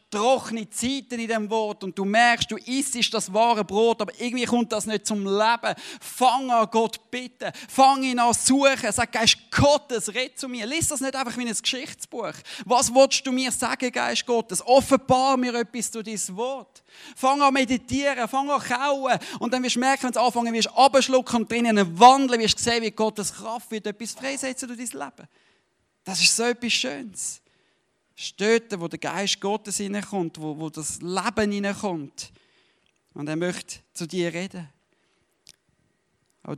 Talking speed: 180 wpm